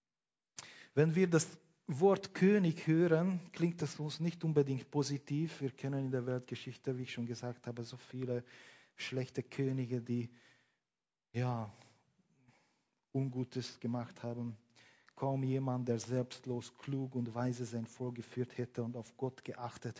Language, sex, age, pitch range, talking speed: German, male, 40-59, 115-135 Hz, 130 wpm